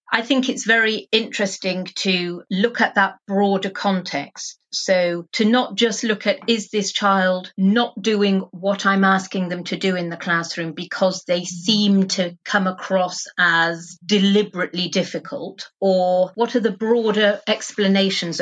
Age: 40-59